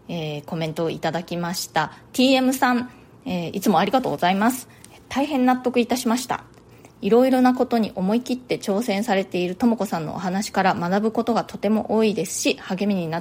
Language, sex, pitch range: Japanese, female, 185-250 Hz